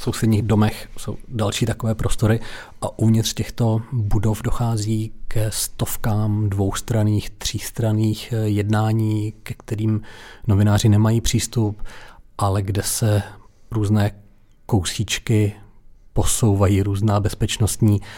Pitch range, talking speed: 105-115 Hz, 100 wpm